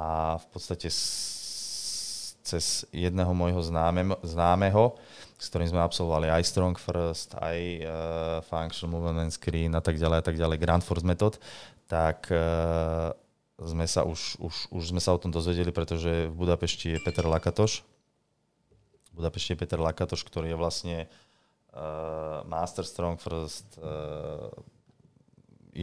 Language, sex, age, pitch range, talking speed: Slovak, male, 20-39, 80-90 Hz, 135 wpm